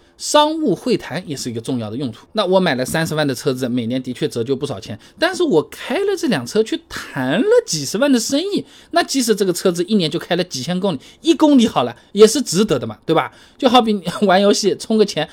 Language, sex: Chinese, male